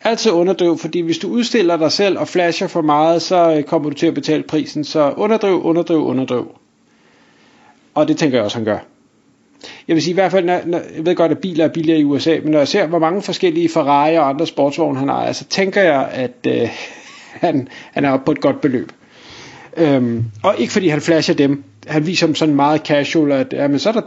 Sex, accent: male, native